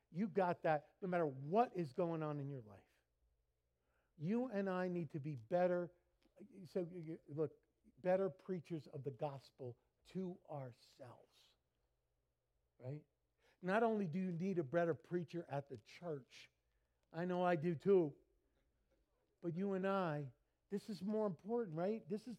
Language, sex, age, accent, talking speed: English, male, 50-69, American, 150 wpm